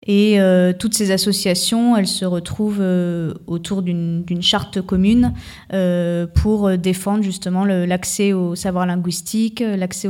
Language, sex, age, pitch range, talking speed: French, female, 20-39, 180-200 Hz, 145 wpm